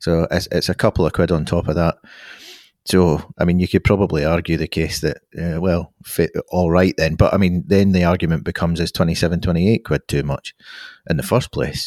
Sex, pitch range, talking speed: male, 80-95 Hz, 210 wpm